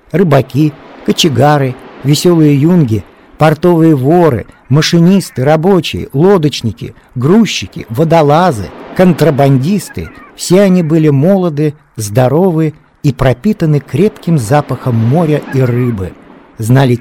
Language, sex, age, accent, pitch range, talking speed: Russian, male, 50-69, native, 120-160 Hz, 90 wpm